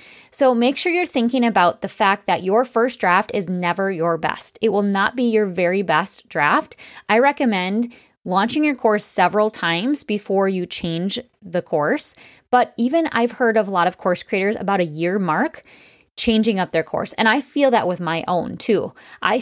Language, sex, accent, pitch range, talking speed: English, female, American, 185-245 Hz, 195 wpm